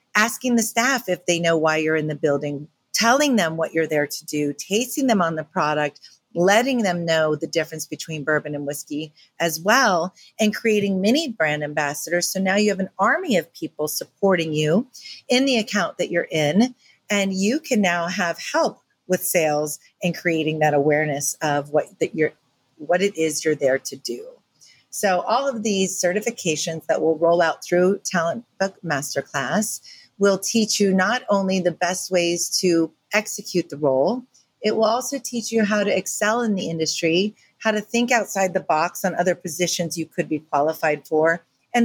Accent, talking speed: American, 185 wpm